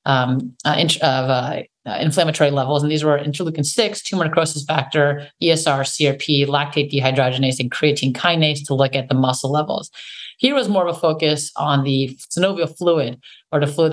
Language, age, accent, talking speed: English, 30-49, American, 170 wpm